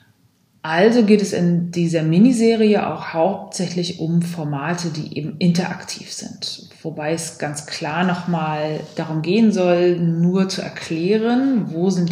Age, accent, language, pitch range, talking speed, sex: 30-49, German, German, 155-190 Hz, 135 wpm, female